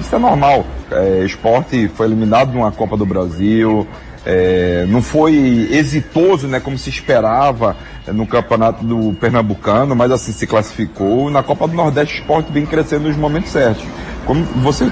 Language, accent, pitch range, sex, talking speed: Portuguese, Brazilian, 115-150 Hz, male, 160 wpm